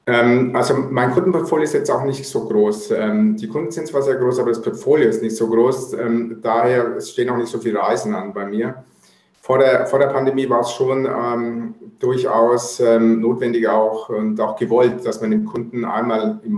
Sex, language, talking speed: male, German, 180 wpm